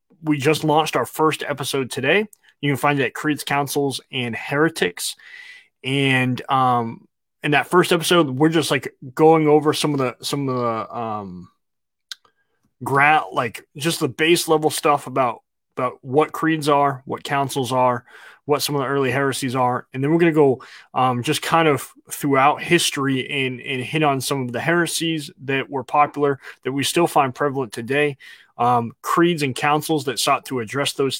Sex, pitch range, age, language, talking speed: male, 130-155 Hz, 20-39, English, 180 wpm